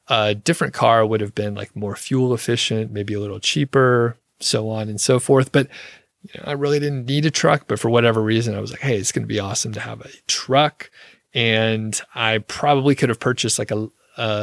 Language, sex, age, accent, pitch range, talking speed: English, male, 30-49, American, 110-140 Hz, 215 wpm